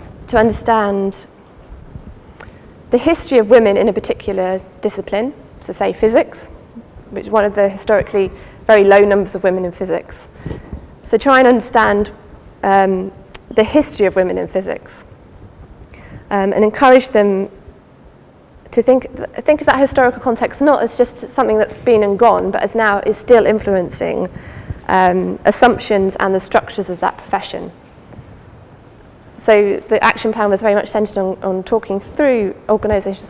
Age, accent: 20-39, British